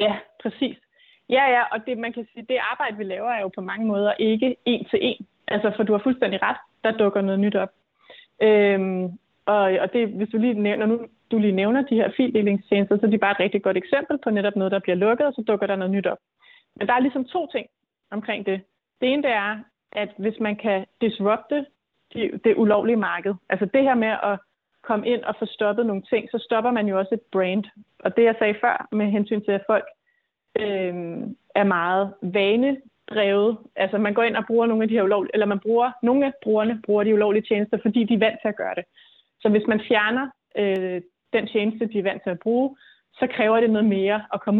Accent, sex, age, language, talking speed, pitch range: native, female, 30-49, Danish, 235 wpm, 200-235 Hz